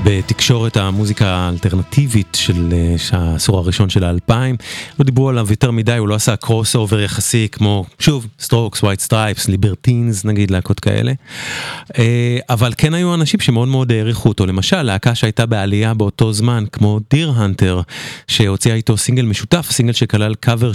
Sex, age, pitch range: male, 30-49, 100-125 Hz